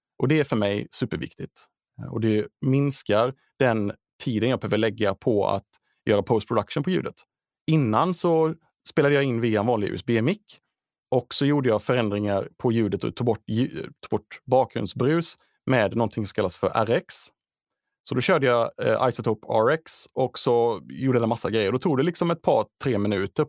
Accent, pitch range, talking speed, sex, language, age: Norwegian, 110-140 Hz, 180 wpm, male, Swedish, 30-49